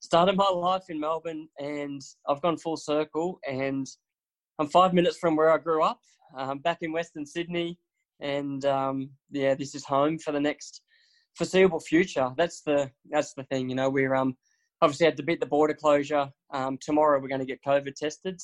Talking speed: 190 wpm